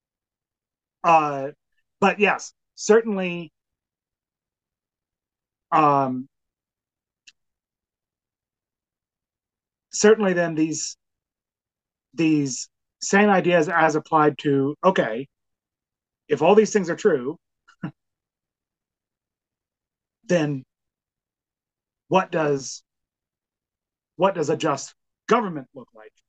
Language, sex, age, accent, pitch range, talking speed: English, male, 30-49, American, 130-175 Hz, 70 wpm